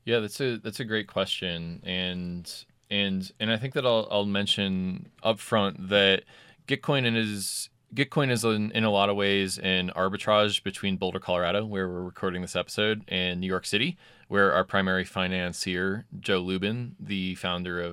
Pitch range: 90-105 Hz